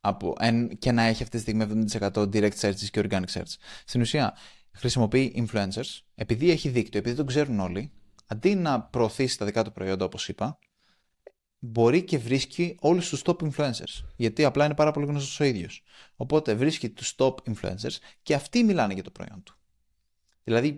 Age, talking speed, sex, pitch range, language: 20-39, 175 wpm, male, 105-145 Hz, Greek